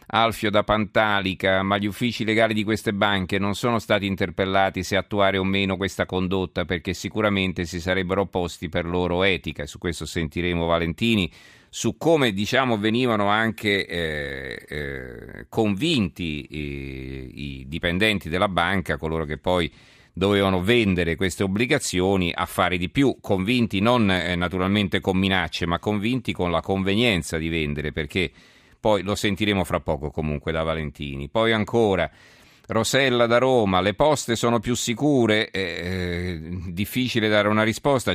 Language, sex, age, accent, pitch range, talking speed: Italian, male, 40-59, native, 85-105 Hz, 145 wpm